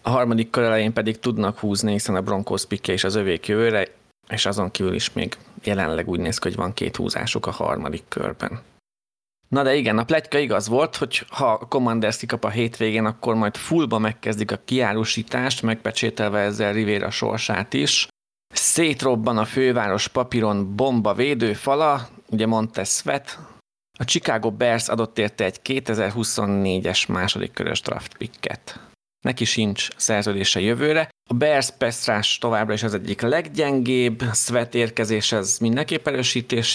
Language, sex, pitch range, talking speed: Hungarian, male, 105-120 Hz, 145 wpm